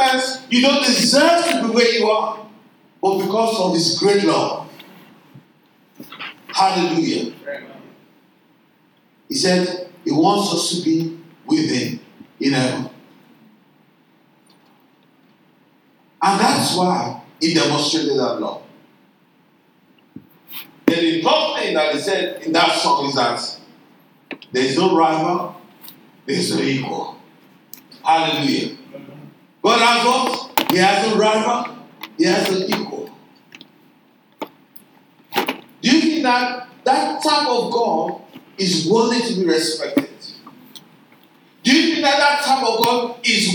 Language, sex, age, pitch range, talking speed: English, male, 50-69, 195-290 Hz, 125 wpm